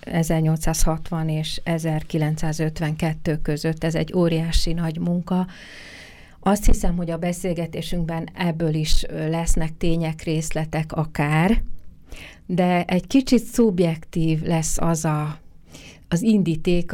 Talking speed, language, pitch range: 100 wpm, Hungarian, 155-175 Hz